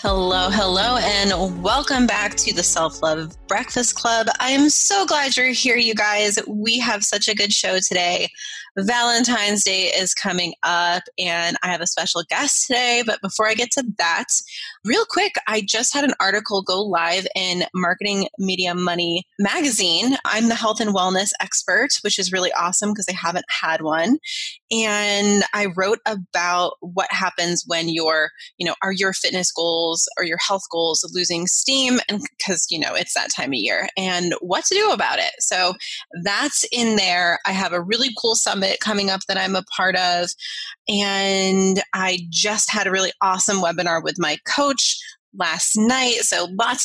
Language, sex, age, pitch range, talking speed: English, female, 20-39, 180-230 Hz, 180 wpm